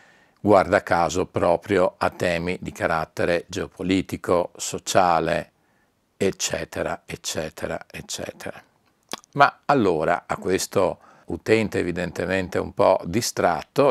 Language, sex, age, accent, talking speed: Italian, male, 50-69, native, 90 wpm